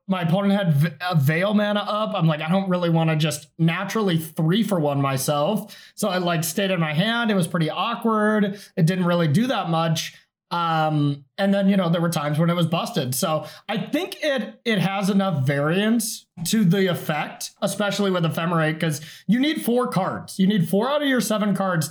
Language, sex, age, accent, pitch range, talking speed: English, male, 30-49, American, 155-200 Hz, 210 wpm